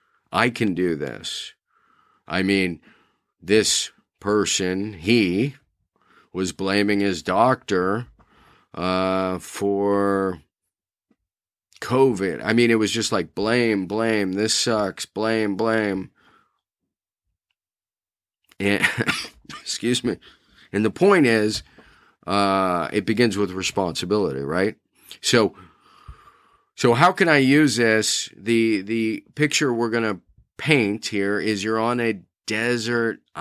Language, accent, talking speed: English, American, 110 wpm